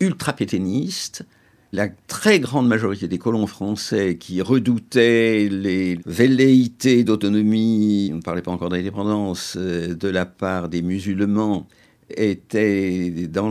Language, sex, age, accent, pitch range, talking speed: French, male, 60-79, French, 90-125 Hz, 120 wpm